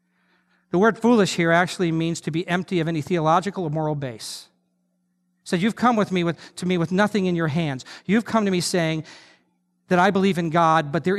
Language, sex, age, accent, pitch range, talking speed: English, male, 50-69, American, 165-220 Hz, 225 wpm